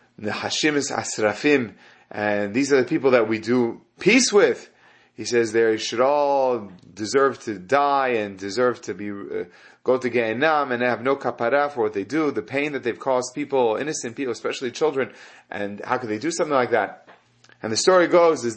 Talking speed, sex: 195 wpm, male